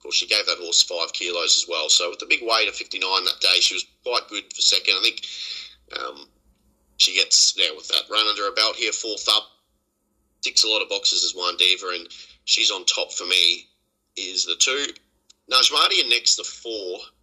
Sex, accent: male, Australian